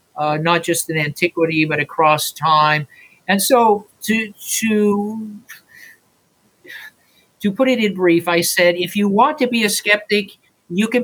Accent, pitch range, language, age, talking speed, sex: American, 165-205 Hz, English, 50-69, 150 wpm, male